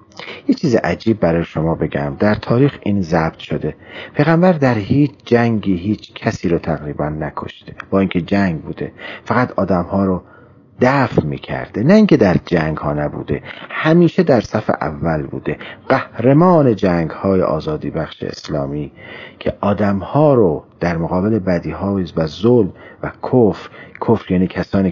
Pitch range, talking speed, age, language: 80-115 Hz, 150 wpm, 40-59, Persian